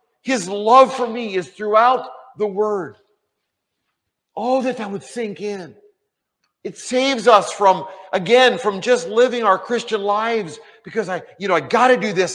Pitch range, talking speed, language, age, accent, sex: 165-230 Hz, 165 wpm, English, 50-69, American, male